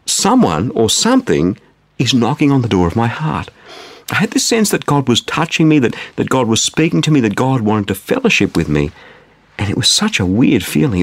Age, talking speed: 50-69, 225 wpm